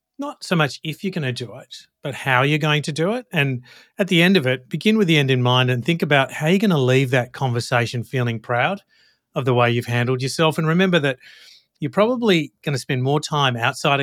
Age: 40-59